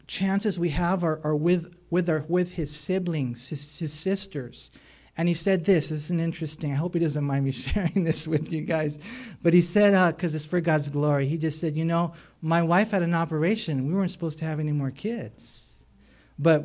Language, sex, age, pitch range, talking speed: English, male, 40-59, 140-180 Hz, 220 wpm